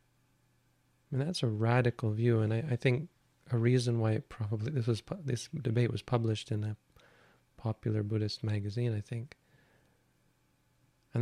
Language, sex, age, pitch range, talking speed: English, male, 30-49, 115-130 Hz, 145 wpm